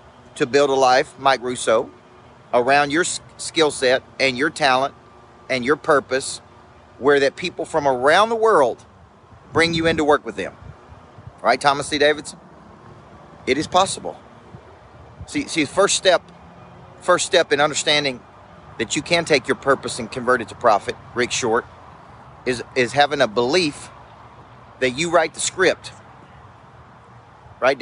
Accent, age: American, 40-59